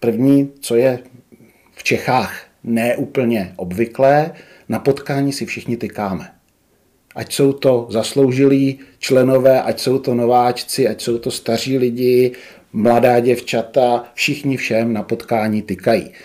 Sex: male